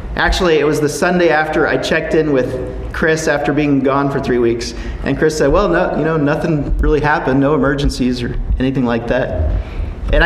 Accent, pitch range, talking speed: American, 140-195 Hz, 200 wpm